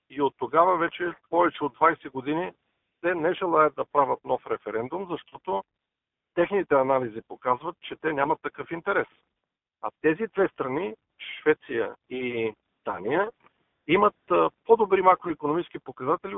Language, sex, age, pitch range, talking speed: Bulgarian, male, 50-69, 150-190 Hz, 130 wpm